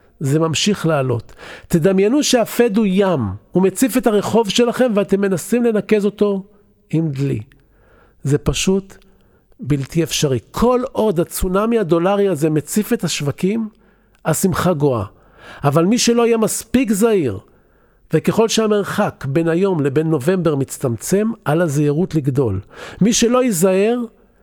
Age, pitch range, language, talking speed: 50-69, 155-215 Hz, Hebrew, 125 wpm